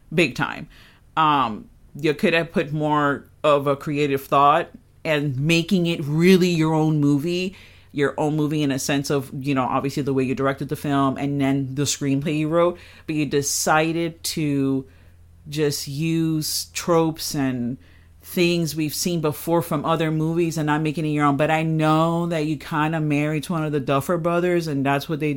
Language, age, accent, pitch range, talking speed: English, 40-59, American, 140-165 Hz, 190 wpm